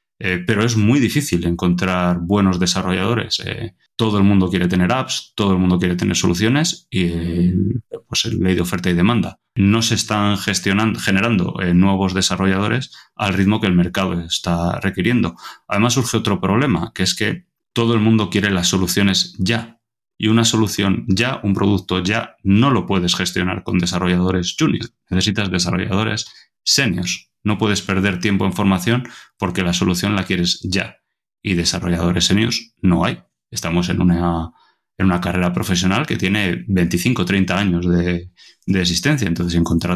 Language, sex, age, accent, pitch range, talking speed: Spanish, male, 30-49, Spanish, 90-105 Hz, 165 wpm